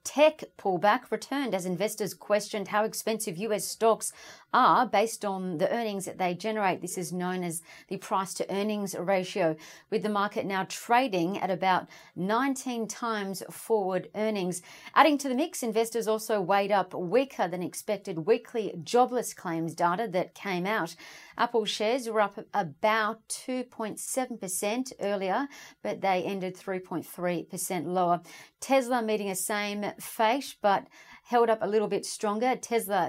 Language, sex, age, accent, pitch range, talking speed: English, female, 40-59, Australian, 185-230 Hz, 145 wpm